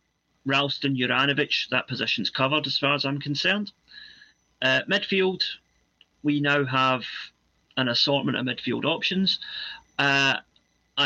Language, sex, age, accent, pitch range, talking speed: English, male, 40-59, British, 125-150 Hz, 110 wpm